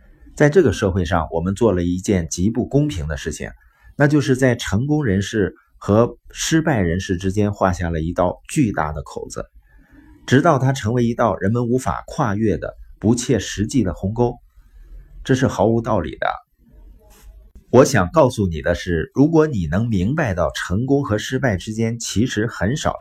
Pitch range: 85-130 Hz